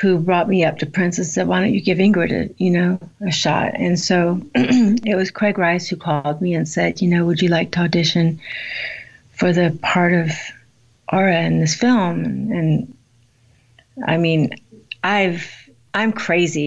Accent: American